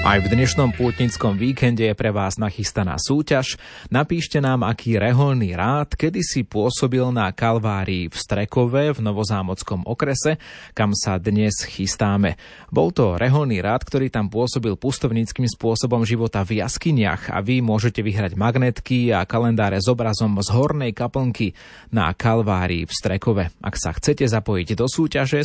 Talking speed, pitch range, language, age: 150 wpm, 100-125 Hz, Slovak, 30-49